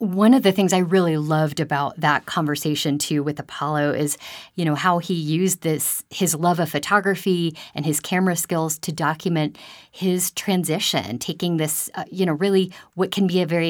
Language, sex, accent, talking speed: English, female, American, 190 wpm